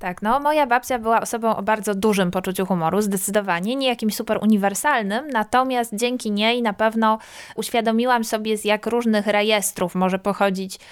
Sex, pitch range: female, 205-235 Hz